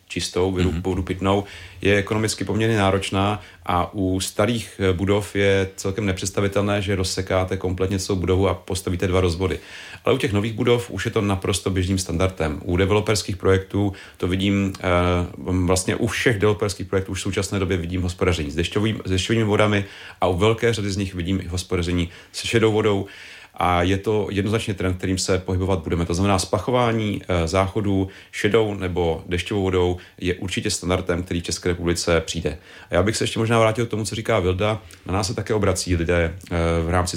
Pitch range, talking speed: 90-105 Hz, 180 wpm